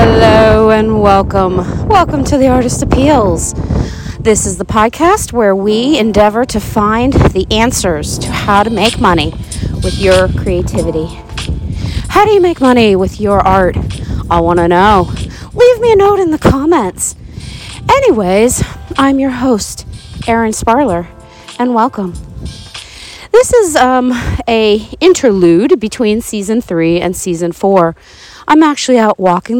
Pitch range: 185-265 Hz